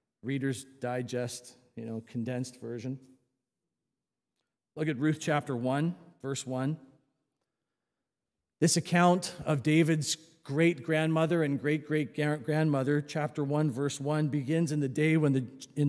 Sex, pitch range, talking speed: male, 130-165 Hz, 100 wpm